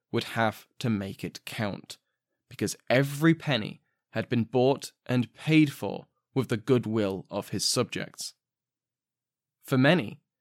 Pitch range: 110-150 Hz